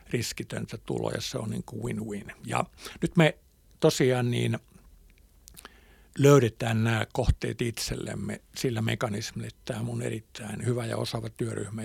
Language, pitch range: Finnish, 100-120 Hz